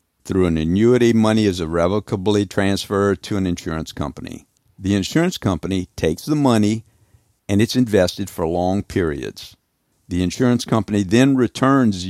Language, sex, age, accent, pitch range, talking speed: English, male, 60-79, American, 90-110 Hz, 140 wpm